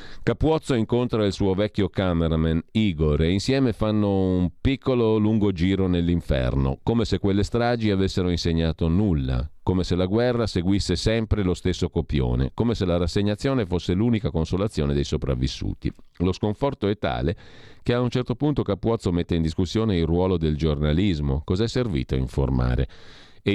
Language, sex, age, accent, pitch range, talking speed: Italian, male, 40-59, native, 80-110 Hz, 160 wpm